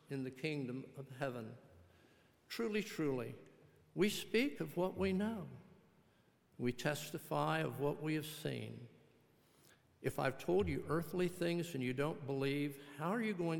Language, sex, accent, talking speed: English, male, American, 150 wpm